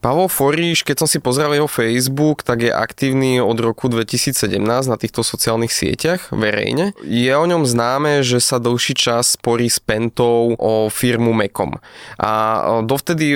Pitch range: 115-135 Hz